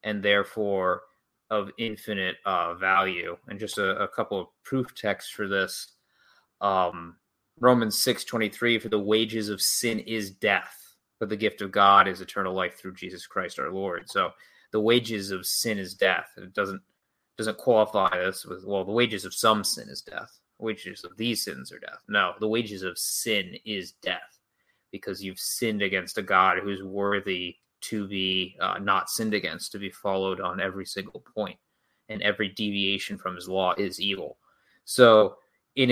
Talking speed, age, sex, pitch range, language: 180 wpm, 20-39, male, 95-110 Hz, English